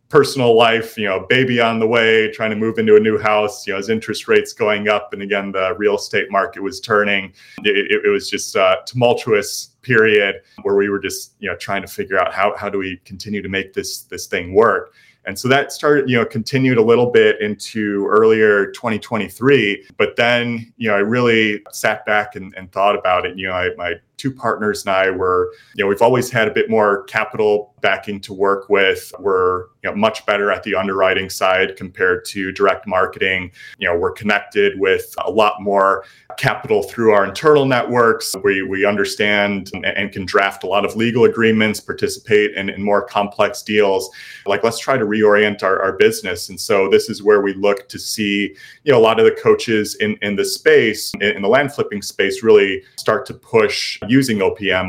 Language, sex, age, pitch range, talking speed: English, male, 30-49, 100-145 Hz, 210 wpm